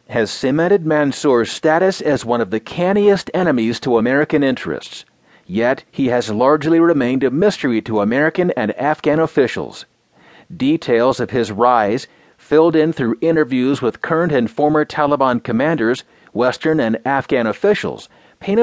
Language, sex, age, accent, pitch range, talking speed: English, male, 40-59, American, 125-160 Hz, 140 wpm